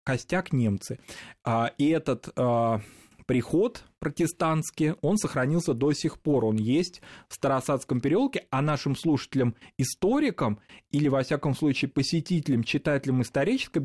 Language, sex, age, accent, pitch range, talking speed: Russian, male, 20-39, native, 115-150 Hz, 110 wpm